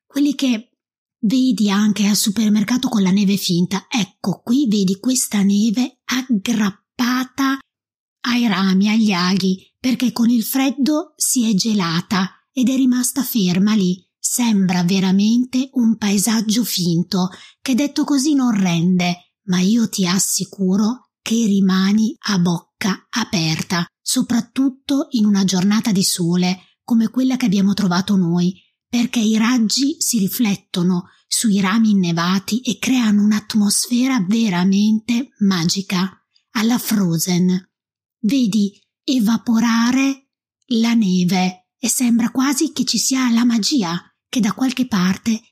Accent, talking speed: native, 125 wpm